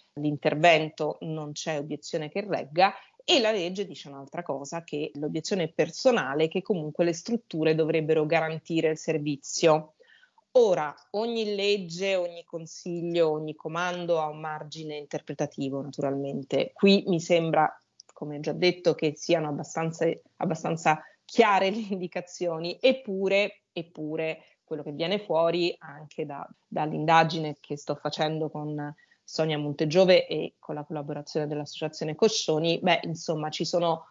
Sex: female